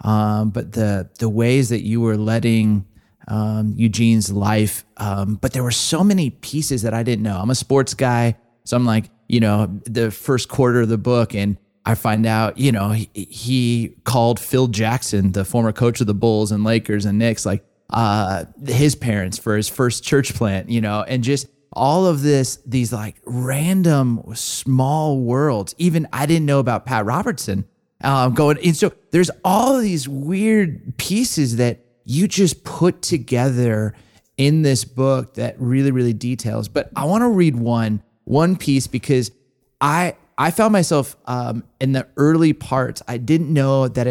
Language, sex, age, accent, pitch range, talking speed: English, male, 30-49, American, 110-140 Hz, 180 wpm